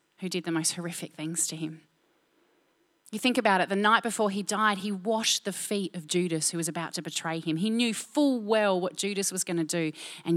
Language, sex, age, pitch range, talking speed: English, female, 30-49, 175-245 Hz, 230 wpm